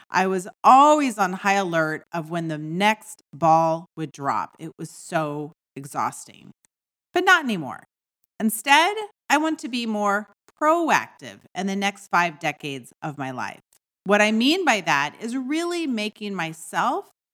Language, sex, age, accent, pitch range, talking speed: English, female, 40-59, American, 170-260 Hz, 150 wpm